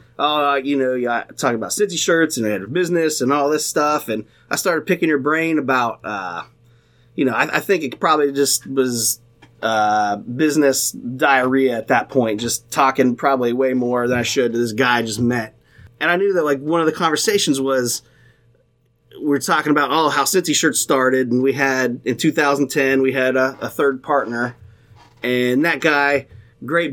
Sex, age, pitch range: male, 30-49, 120-150 Hz